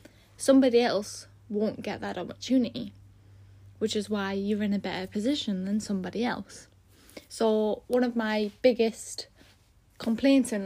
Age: 10-29